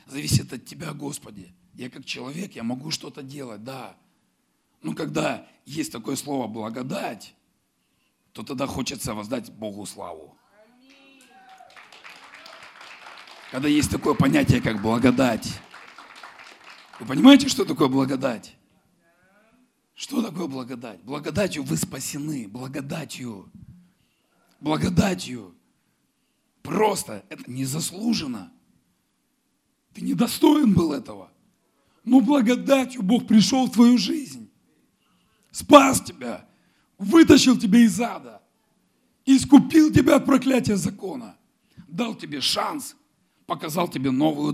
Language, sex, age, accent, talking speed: Russian, male, 40-59, native, 100 wpm